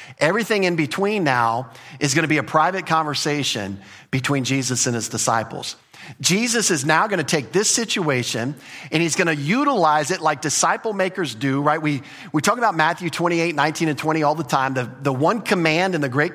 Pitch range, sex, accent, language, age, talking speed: 135-180 Hz, male, American, English, 50-69, 200 wpm